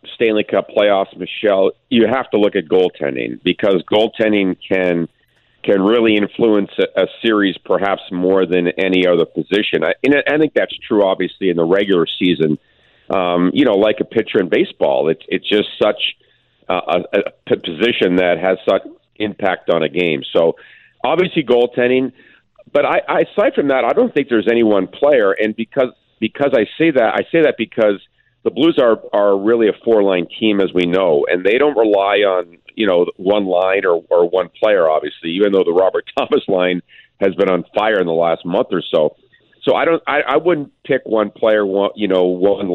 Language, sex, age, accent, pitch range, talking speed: English, male, 50-69, American, 90-115 Hz, 190 wpm